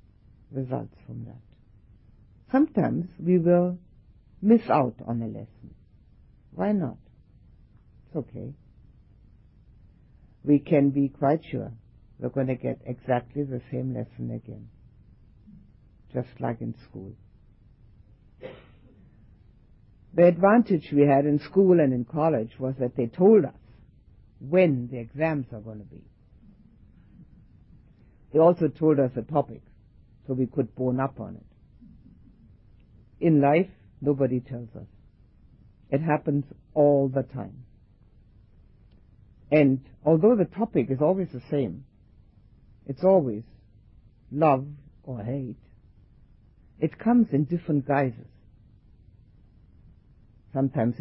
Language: English